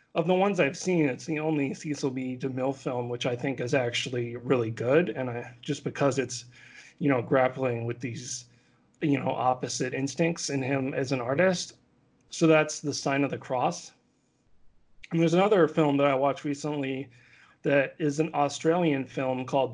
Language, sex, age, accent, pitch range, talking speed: English, male, 40-59, American, 130-150 Hz, 180 wpm